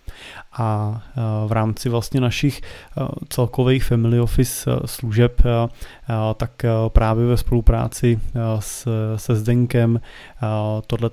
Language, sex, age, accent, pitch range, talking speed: Czech, male, 30-49, native, 105-120 Hz, 90 wpm